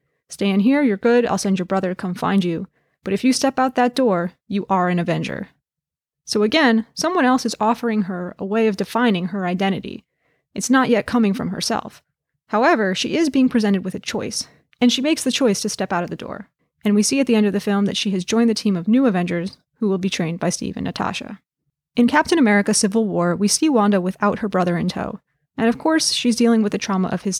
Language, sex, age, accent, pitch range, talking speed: English, female, 20-39, American, 185-230 Hz, 245 wpm